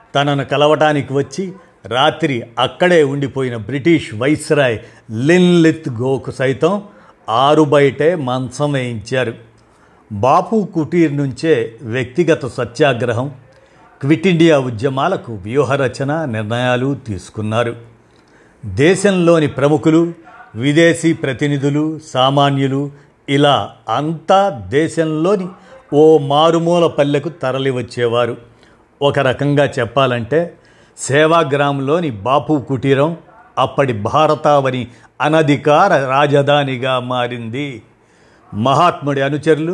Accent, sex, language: native, male, Telugu